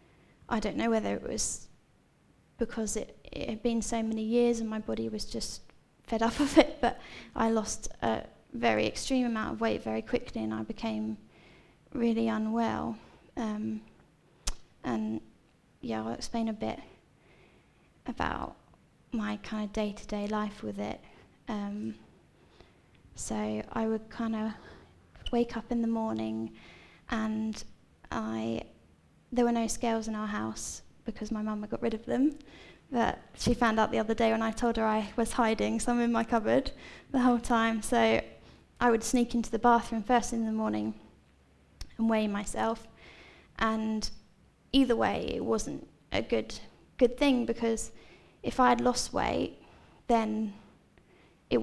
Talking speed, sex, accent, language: 155 wpm, female, British, English